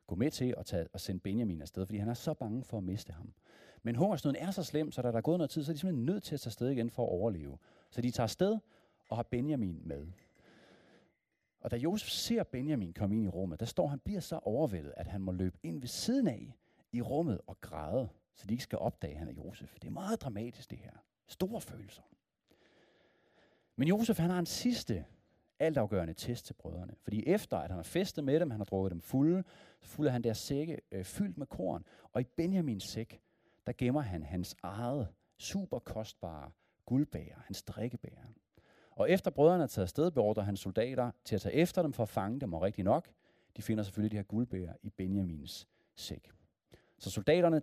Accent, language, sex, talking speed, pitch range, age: native, Danish, male, 215 wpm, 95-150 Hz, 40-59